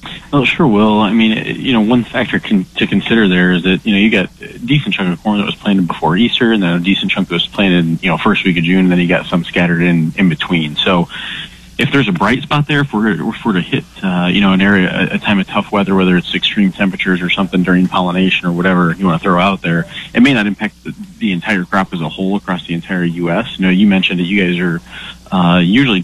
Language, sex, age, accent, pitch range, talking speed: English, male, 30-49, American, 90-100 Hz, 265 wpm